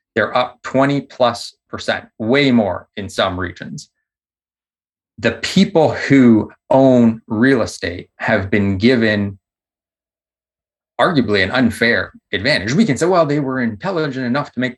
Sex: male